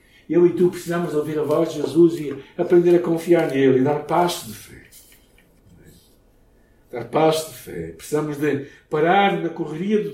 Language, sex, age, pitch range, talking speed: Portuguese, male, 60-79, 125-170 Hz, 170 wpm